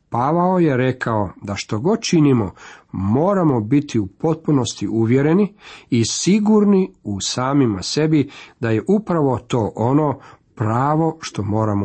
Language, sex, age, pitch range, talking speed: Croatian, male, 50-69, 110-155 Hz, 125 wpm